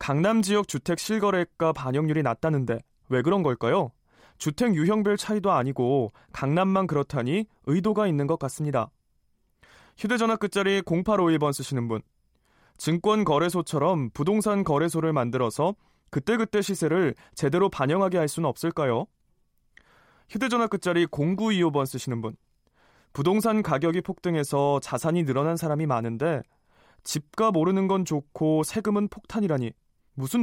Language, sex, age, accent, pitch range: Korean, male, 20-39, native, 140-195 Hz